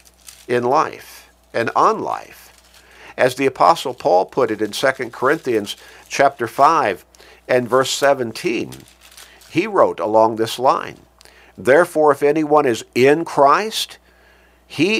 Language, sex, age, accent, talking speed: English, male, 50-69, American, 125 wpm